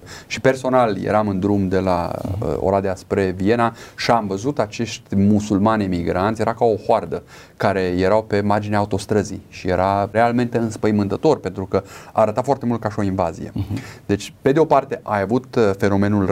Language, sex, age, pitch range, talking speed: Romanian, male, 30-49, 95-115 Hz, 170 wpm